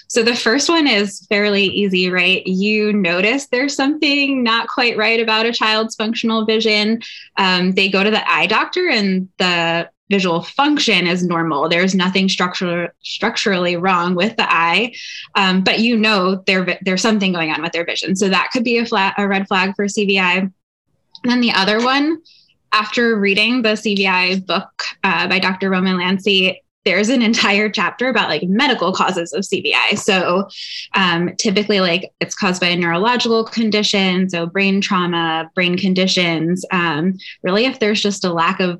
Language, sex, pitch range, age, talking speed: English, female, 180-225 Hz, 10-29, 170 wpm